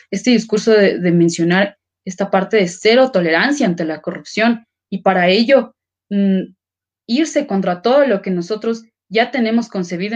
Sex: female